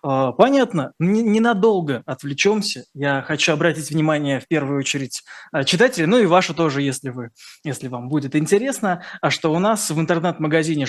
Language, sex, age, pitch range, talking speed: Russian, male, 20-39, 145-180 Hz, 150 wpm